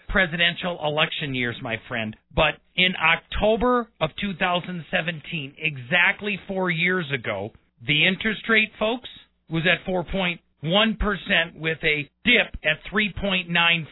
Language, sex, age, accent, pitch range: Japanese, male, 40-59, American, 155-195 Hz